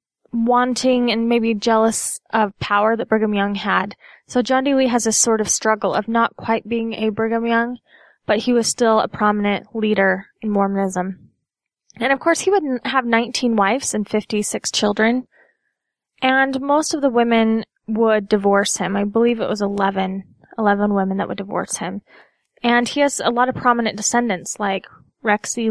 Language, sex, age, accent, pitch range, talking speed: English, female, 10-29, American, 210-255 Hz, 175 wpm